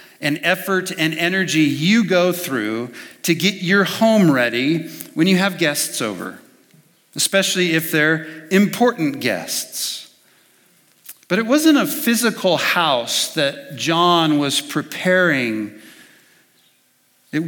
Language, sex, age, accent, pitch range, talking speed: English, male, 50-69, American, 140-185 Hz, 115 wpm